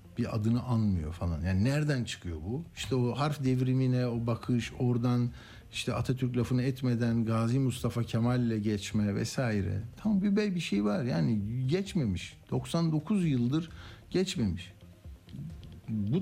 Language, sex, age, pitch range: Turkish, male, 60-79, 110-155 Hz